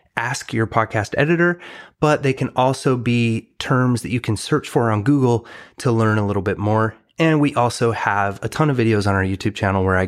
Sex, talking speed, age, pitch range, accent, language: male, 220 wpm, 30-49, 105-135 Hz, American, English